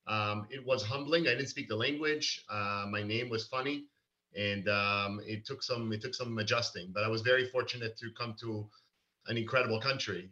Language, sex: English, male